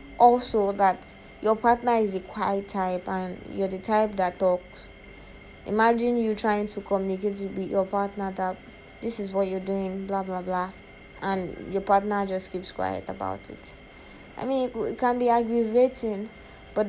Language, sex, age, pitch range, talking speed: English, female, 20-39, 180-215 Hz, 165 wpm